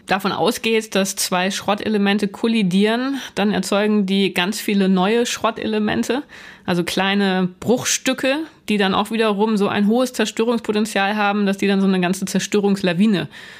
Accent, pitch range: German, 185-215 Hz